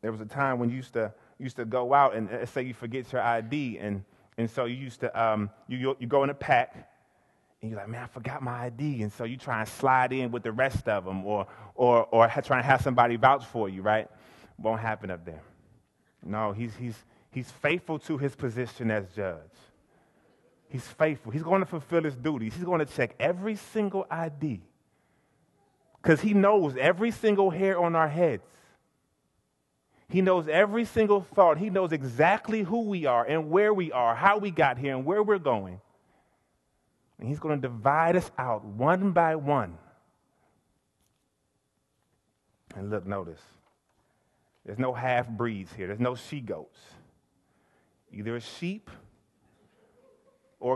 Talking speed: 175 wpm